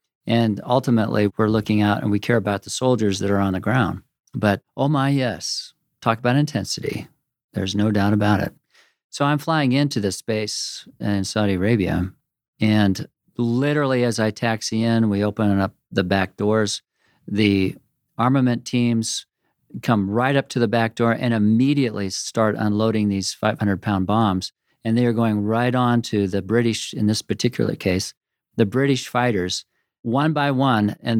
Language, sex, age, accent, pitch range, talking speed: English, male, 50-69, American, 105-125 Hz, 165 wpm